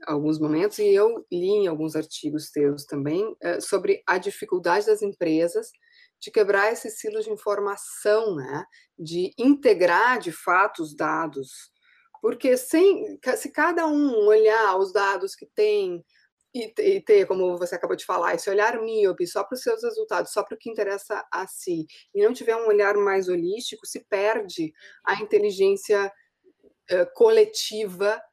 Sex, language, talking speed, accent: female, Portuguese, 155 wpm, Brazilian